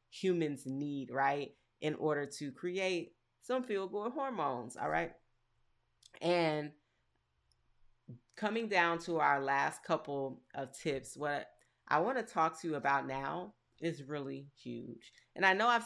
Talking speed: 145 wpm